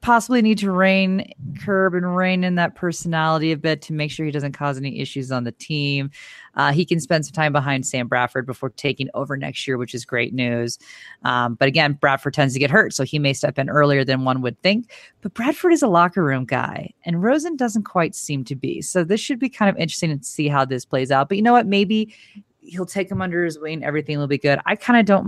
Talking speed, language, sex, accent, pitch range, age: 250 wpm, English, female, American, 140-195 Hz, 30-49